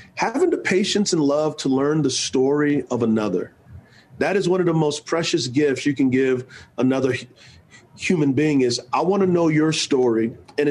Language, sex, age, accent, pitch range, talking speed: English, male, 40-59, American, 140-185 Hz, 185 wpm